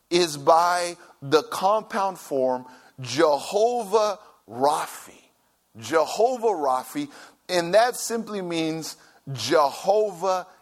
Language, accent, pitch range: English, American, 185-255 Hz